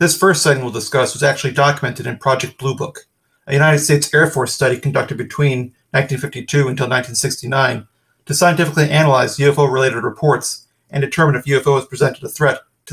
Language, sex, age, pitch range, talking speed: English, male, 40-59, 130-150 Hz, 165 wpm